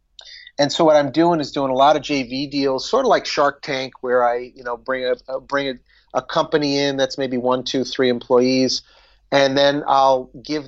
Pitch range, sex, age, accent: 125-145 Hz, male, 30-49, American